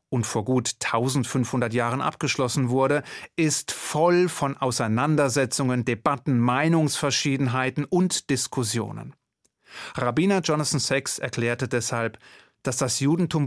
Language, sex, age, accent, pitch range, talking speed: German, male, 30-49, German, 115-145 Hz, 105 wpm